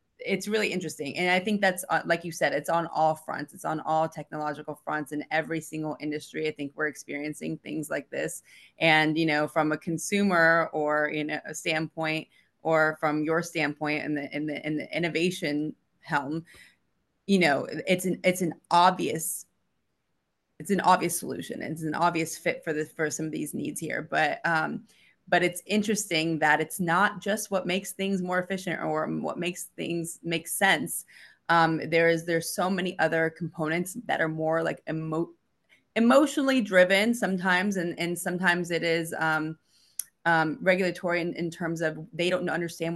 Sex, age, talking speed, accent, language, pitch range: female, 20-39, 180 wpm, American, English, 155-175 Hz